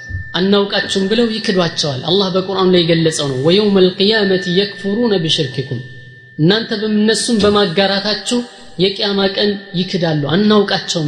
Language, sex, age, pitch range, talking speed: Amharic, female, 20-39, 165-210 Hz, 105 wpm